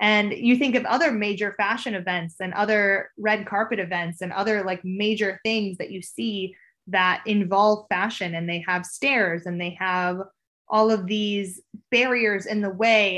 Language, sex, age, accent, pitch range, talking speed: English, female, 20-39, American, 190-240 Hz, 175 wpm